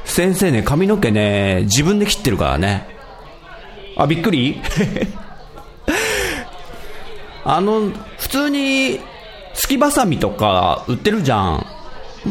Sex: male